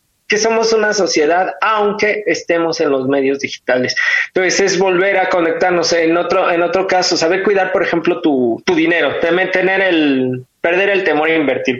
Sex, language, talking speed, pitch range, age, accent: male, Spanish, 175 wpm, 150-190 Hz, 20-39, Mexican